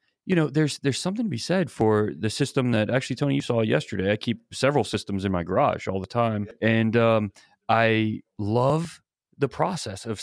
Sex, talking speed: male, 200 wpm